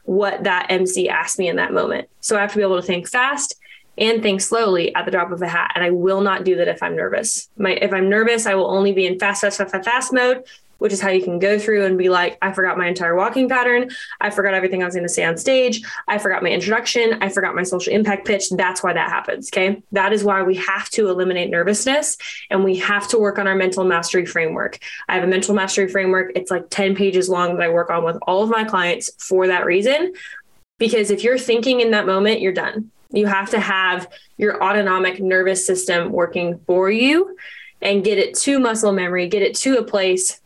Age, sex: 20-39, female